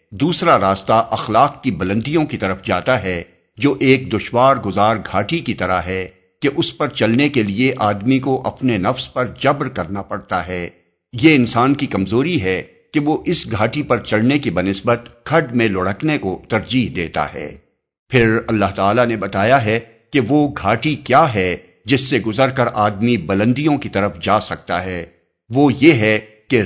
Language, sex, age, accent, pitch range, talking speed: English, male, 60-79, Indian, 95-130 Hz, 135 wpm